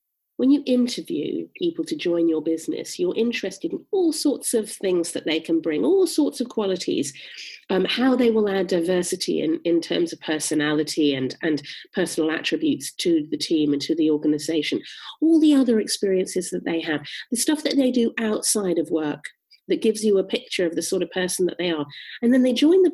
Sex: female